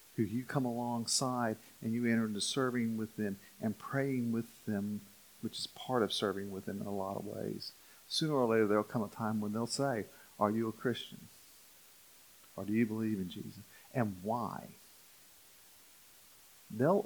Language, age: English, 50-69